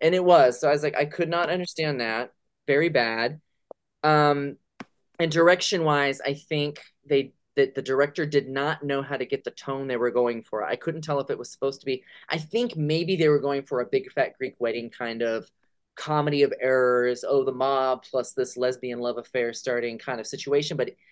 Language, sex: English, male